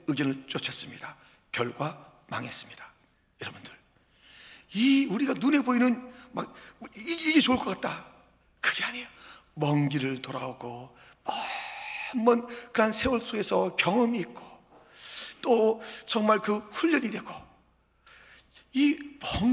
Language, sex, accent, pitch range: Korean, male, native, 175-250 Hz